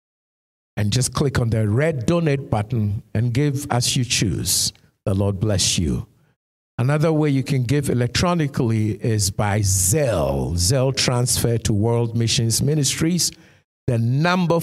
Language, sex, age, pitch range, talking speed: English, male, 60-79, 110-145 Hz, 140 wpm